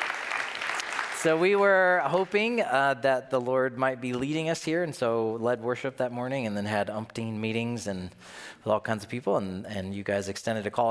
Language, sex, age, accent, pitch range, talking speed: English, male, 40-59, American, 110-130 Hz, 205 wpm